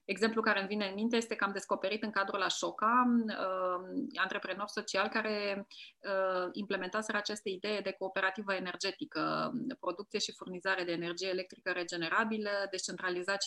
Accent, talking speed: Romanian, 150 wpm